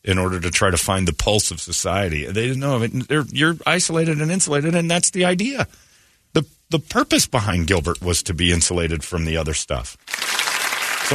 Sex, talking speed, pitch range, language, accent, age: male, 190 wpm, 80-125 Hz, English, American, 40-59